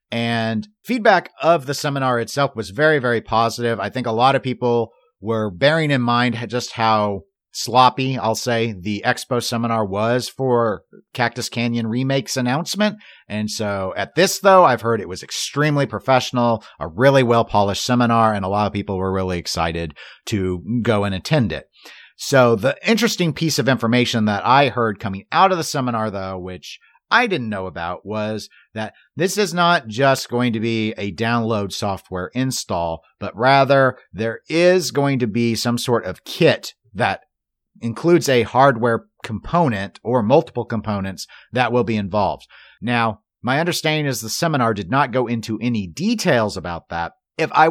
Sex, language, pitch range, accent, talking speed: male, English, 105-135 Hz, American, 170 wpm